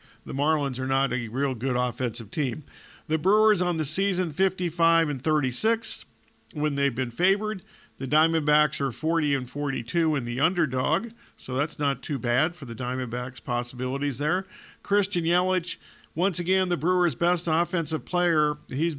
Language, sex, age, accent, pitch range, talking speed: English, male, 50-69, American, 135-175 Hz, 160 wpm